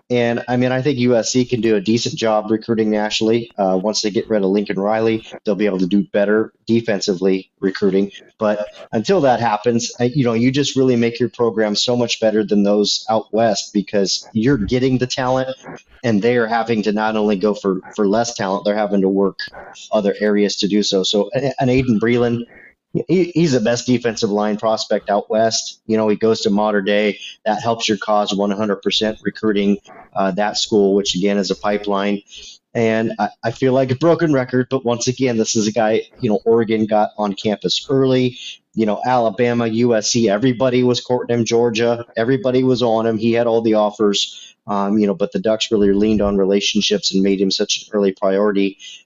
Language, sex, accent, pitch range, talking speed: English, male, American, 105-120 Hz, 200 wpm